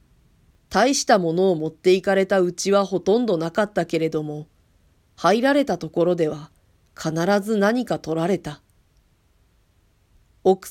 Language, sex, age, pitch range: Japanese, female, 40-59, 160-220 Hz